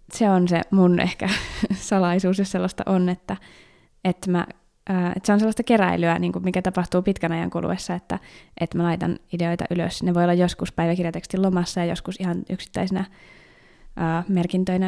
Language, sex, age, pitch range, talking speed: Finnish, female, 20-39, 175-195 Hz, 170 wpm